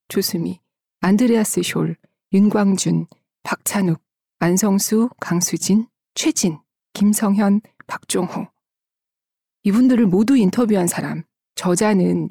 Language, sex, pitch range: Korean, female, 180-220 Hz